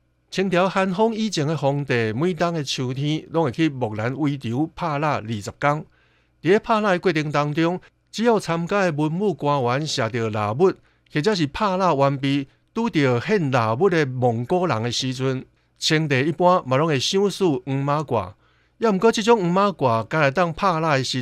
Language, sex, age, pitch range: Chinese, male, 60-79, 130-175 Hz